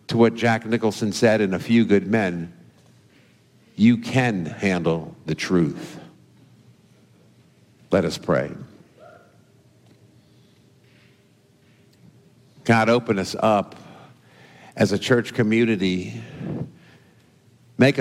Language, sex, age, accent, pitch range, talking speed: English, male, 50-69, American, 95-120 Hz, 90 wpm